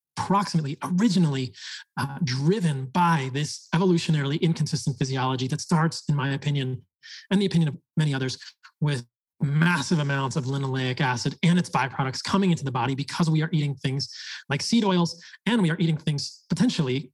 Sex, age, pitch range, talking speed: male, 30-49, 140-170 Hz, 165 wpm